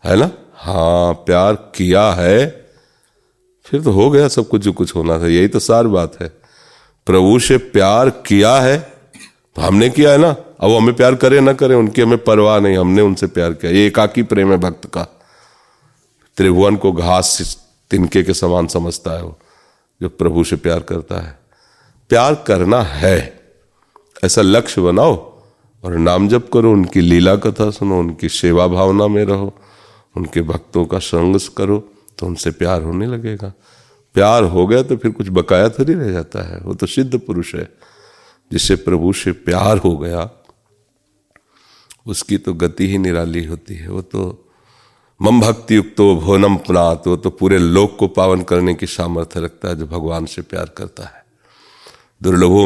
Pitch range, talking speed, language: 90-110 Hz, 175 wpm, Hindi